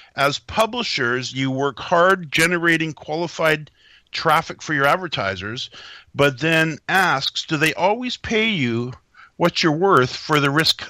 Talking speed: 140 wpm